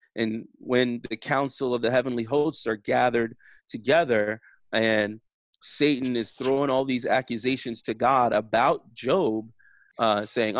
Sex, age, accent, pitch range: male, 30-49, American, 115-135 Hz